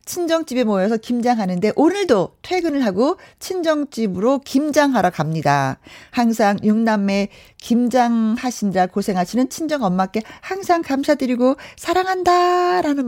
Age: 40-59